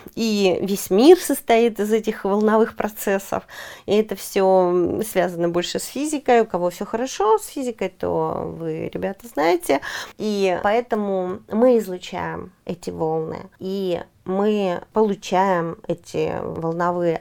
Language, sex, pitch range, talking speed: Russian, female, 185-250 Hz, 125 wpm